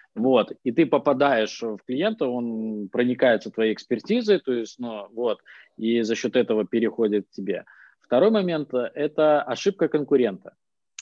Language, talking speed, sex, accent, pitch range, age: Russian, 145 wpm, male, native, 105-140 Hz, 20-39